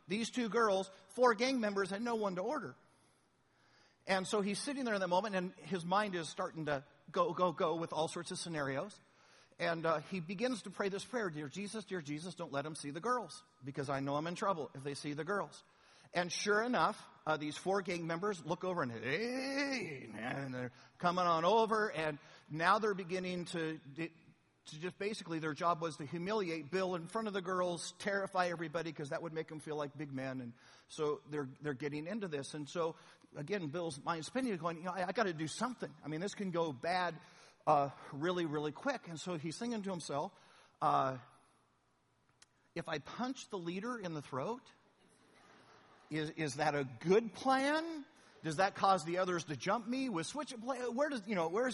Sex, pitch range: male, 155-215 Hz